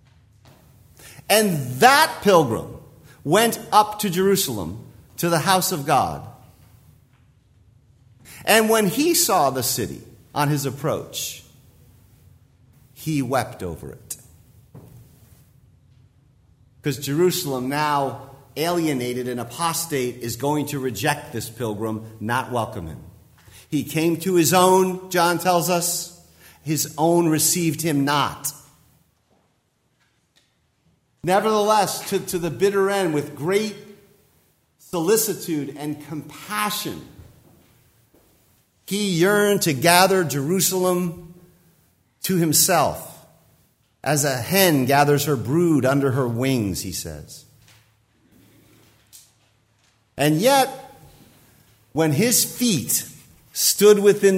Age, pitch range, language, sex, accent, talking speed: 50-69, 120-175 Hz, English, male, American, 100 wpm